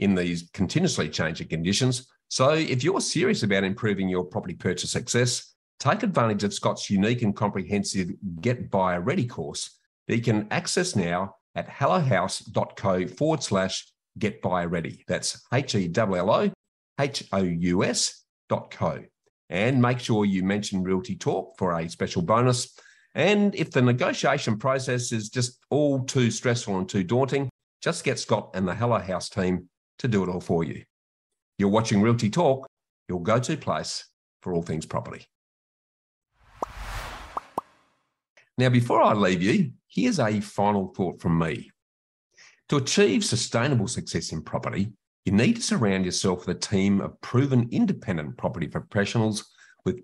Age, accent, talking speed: 50-69, Australian, 145 wpm